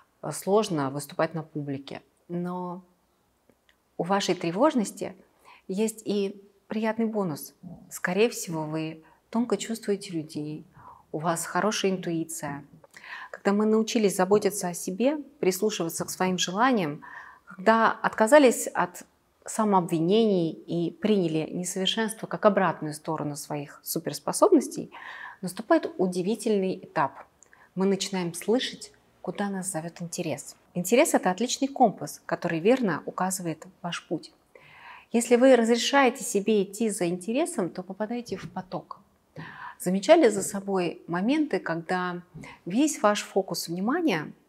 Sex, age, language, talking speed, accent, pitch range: female, 30-49, Russian, 110 wpm, native, 170-220 Hz